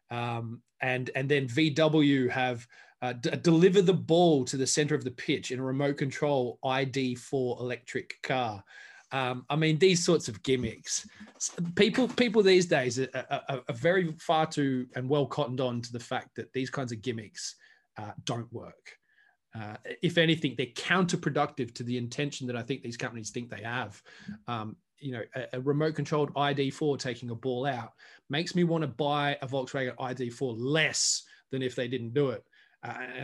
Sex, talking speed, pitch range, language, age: male, 180 wpm, 125-155 Hz, English, 20-39